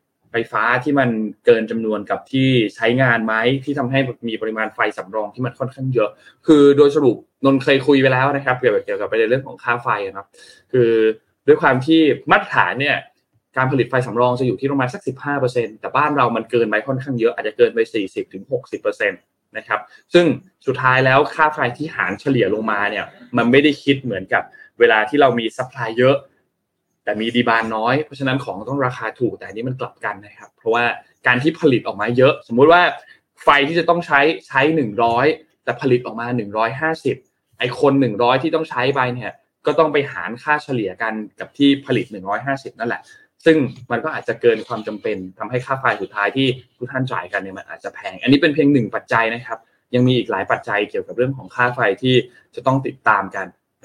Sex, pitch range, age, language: male, 115-140 Hz, 20-39, Thai